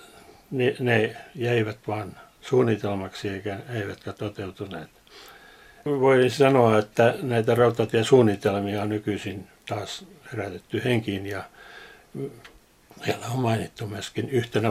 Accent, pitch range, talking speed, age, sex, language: native, 105-120 Hz, 100 wpm, 60-79, male, Finnish